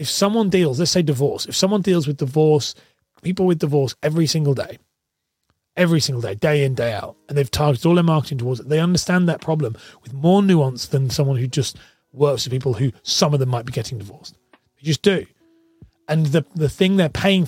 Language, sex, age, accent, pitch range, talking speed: English, male, 30-49, British, 130-165 Hz, 215 wpm